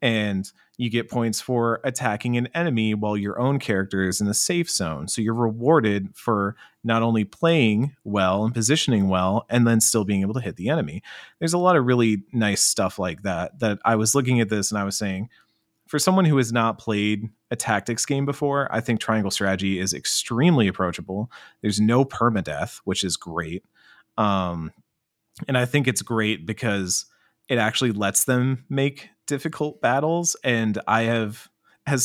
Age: 30-49